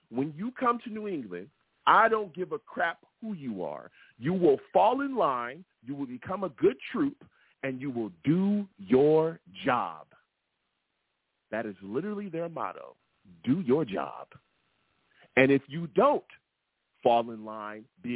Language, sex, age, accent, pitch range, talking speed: English, male, 40-59, American, 105-160 Hz, 155 wpm